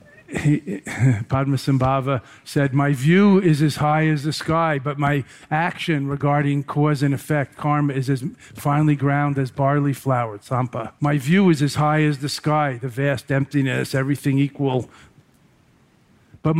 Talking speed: 150 wpm